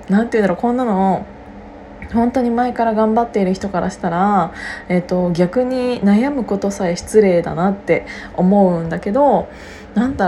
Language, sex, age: Japanese, female, 20-39